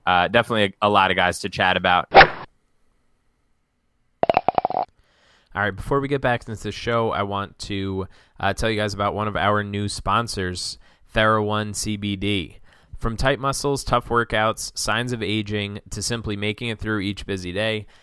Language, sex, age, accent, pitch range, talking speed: English, male, 20-39, American, 95-115 Hz, 170 wpm